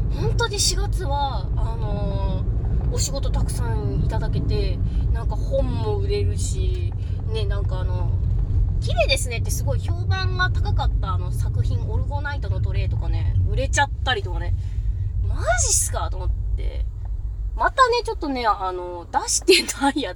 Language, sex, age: Japanese, female, 20-39